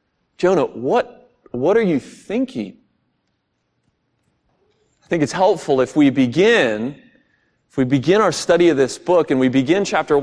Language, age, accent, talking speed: English, 40-59, American, 145 wpm